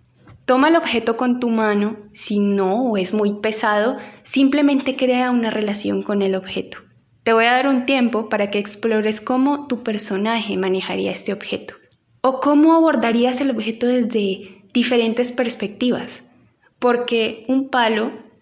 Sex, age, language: female, 10-29, Spanish